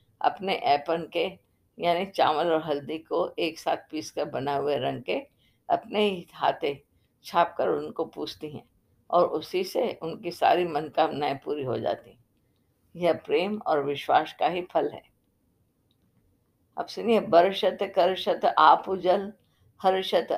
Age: 50-69